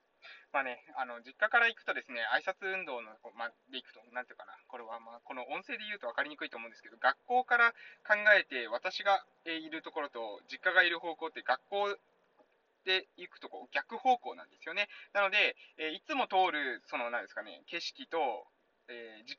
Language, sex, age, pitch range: Japanese, male, 20-39, 160-230 Hz